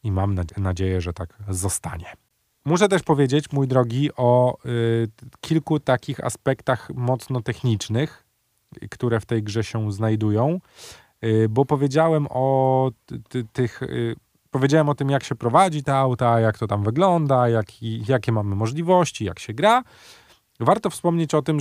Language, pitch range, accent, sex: Polish, 115-140 Hz, native, male